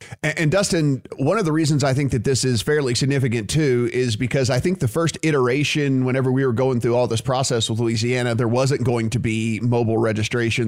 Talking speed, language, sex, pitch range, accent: 215 wpm, English, male, 125-145 Hz, American